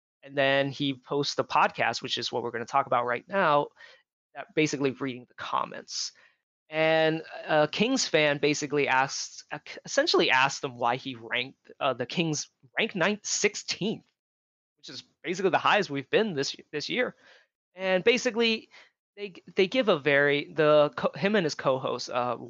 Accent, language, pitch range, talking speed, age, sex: American, English, 130-160 Hz, 165 wpm, 20-39, male